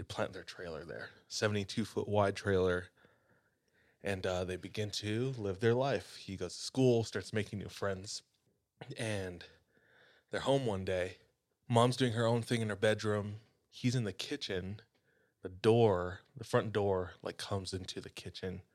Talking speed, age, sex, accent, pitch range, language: 165 wpm, 20-39, male, American, 95-115 Hz, English